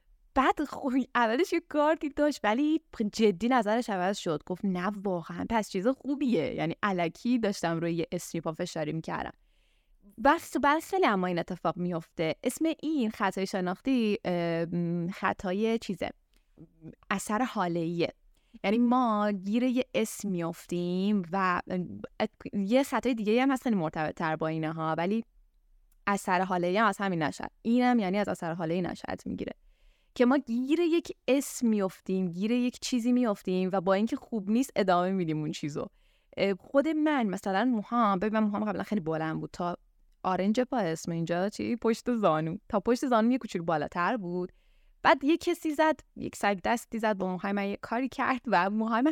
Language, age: Persian, 10-29